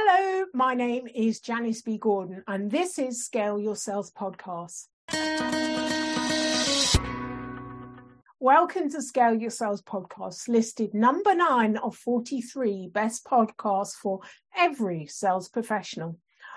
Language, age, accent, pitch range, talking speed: English, 50-69, British, 210-320 Hz, 110 wpm